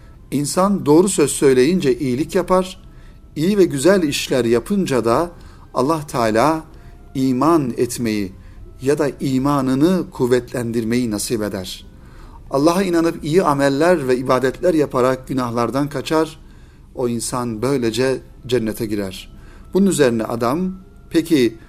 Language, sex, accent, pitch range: Turkish, male, native, 120-165 Hz